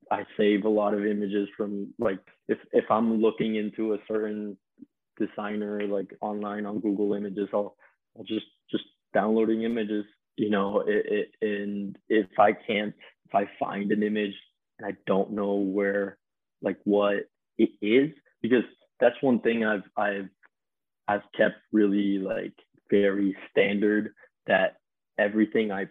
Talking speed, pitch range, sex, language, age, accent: 150 wpm, 100-110 Hz, male, English, 20-39, American